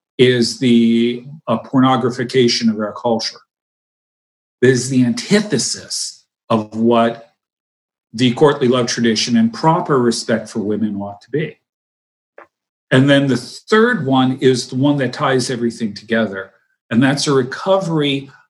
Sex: male